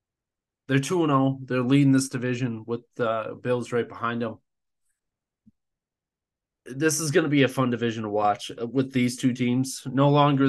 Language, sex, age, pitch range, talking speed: English, male, 20-39, 115-140 Hz, 165 wpm